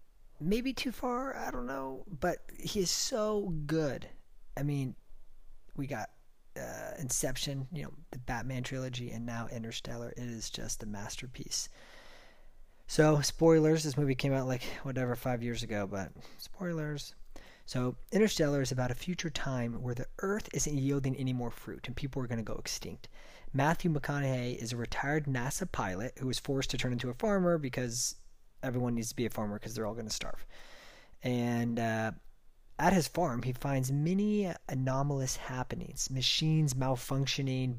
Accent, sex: American, male